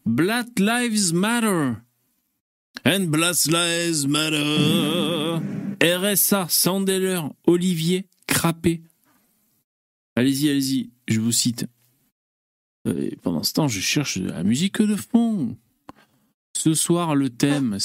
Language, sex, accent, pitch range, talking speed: French, male, French, 120-195 Hz, 115 wpm